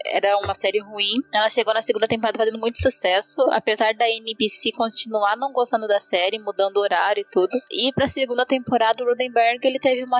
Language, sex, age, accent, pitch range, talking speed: Portuguese, female, 10-29, Brazilian, 205-255 Hz, 195 wpm